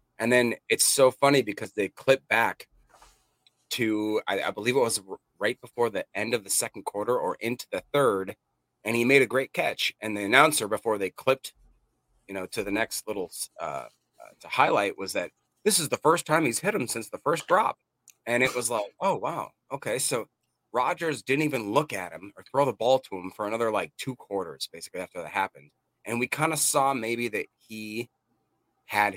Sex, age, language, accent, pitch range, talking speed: male, 30-49, English, American, 100-130 Hz, 210 wpm